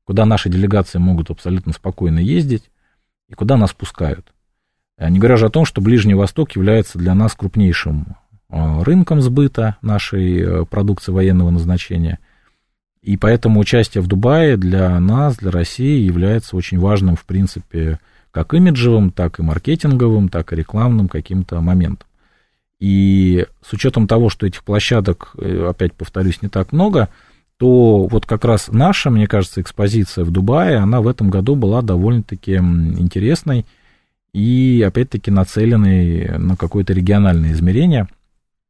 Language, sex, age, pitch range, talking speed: Russian, male, 40-59, 90-115 Hz, 140 wpm